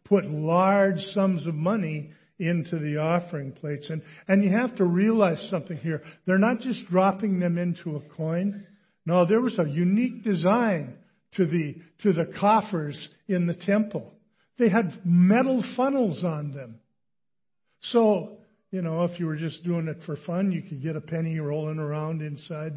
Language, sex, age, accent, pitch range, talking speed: English, male, 50-69, American, 155-200 Hz, 170 wpm